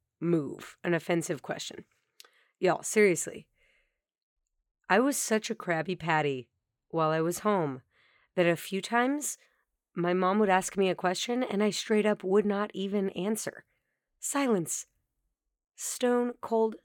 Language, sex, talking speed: English, female, 135 wpm